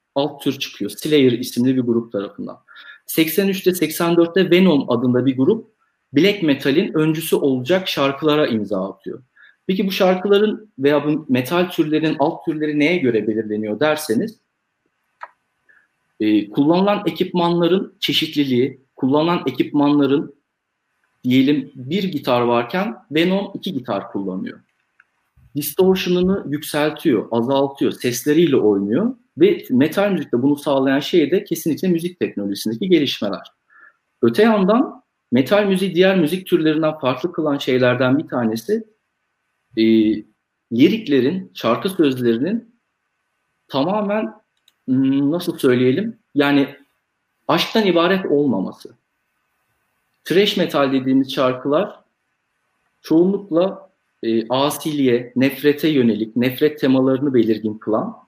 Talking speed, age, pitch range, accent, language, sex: 100 wpm, 50-69, 130-185 Hz, native, Turkish, male